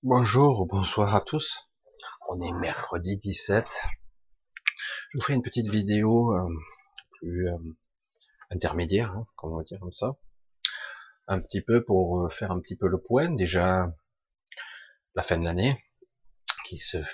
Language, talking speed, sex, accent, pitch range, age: French, 145 wpm, male, French, 85-110 Hz, 40-59